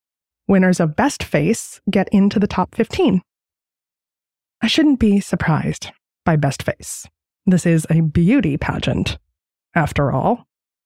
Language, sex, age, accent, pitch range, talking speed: English, female, 20-39, American, 180-270 Hz, 125 wpm